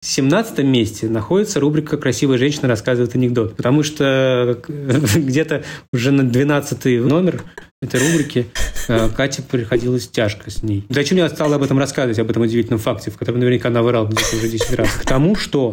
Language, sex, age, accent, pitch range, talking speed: Russian, male, 20-39, native, 120-150 Hz, 165 wpm